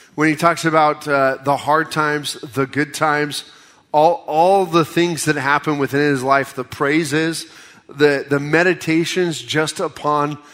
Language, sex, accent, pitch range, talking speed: English, male, American, 140-170 Hz, 155 wpm